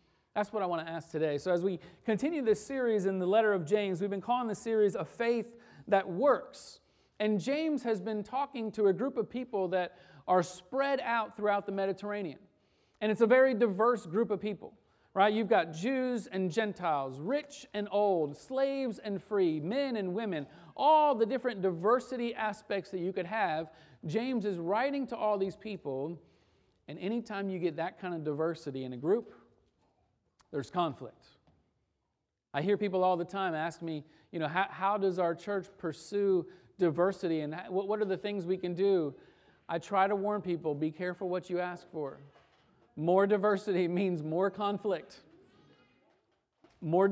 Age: 40-59